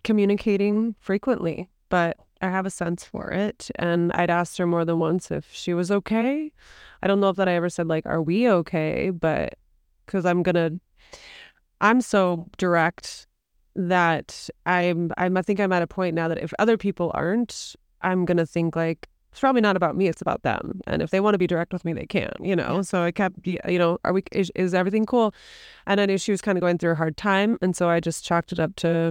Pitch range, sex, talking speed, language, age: 165-190 Hz, female, 225 wpm, English, 20-39